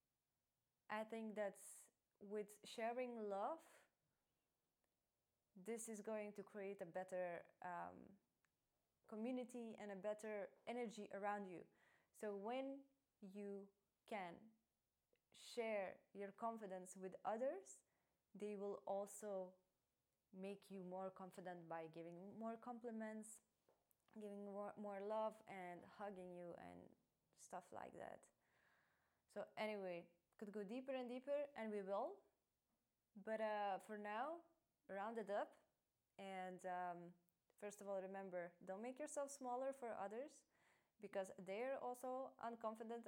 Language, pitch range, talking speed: English, 195-240 Hz, 120 wpm